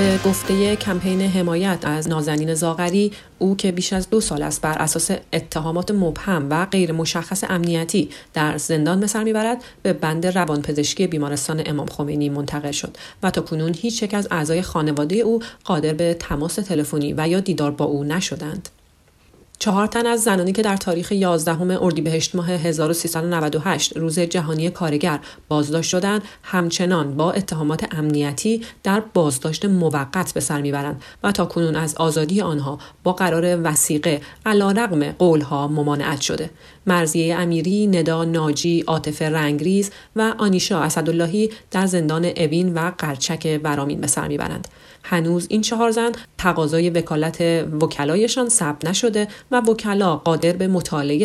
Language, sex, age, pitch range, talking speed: Persian, female, 40-59, 155-190 Hz, 145 wpm